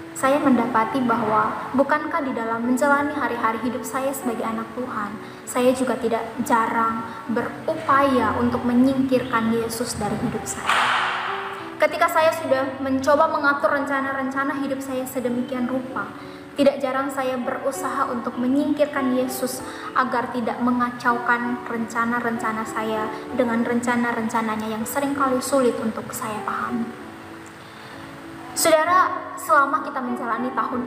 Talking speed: 115 wpm